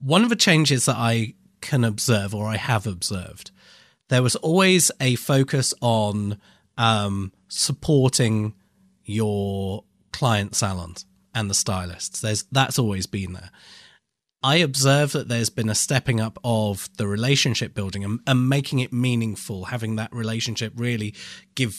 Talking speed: 145 wpm